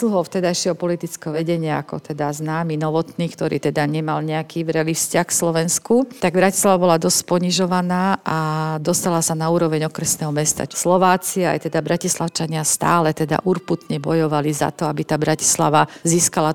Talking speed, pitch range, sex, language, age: 150 wpm, 155-180 Hz, female, Slovak, 50-69